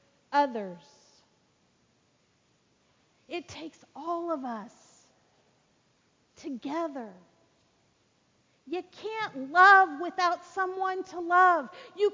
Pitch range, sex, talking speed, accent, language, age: 250-345 Hz, female, 75 wpm, American, English, 50-69